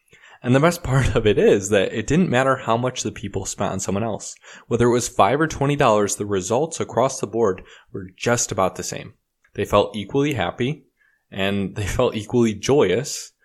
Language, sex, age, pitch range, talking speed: English, male, 20-39, 95-125 Hz, 195 wpm